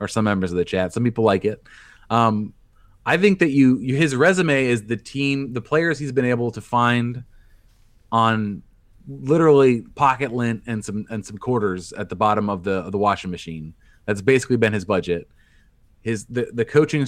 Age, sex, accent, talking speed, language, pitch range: 30-49, male, American, 195 wpm, English, 105-130 Hz